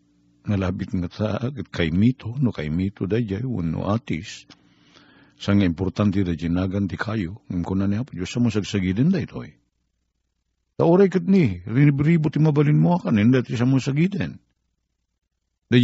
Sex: male